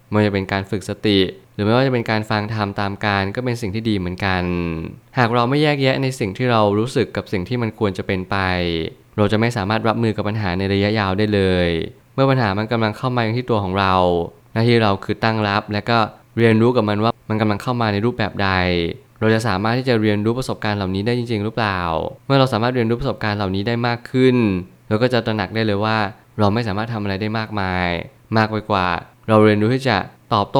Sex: male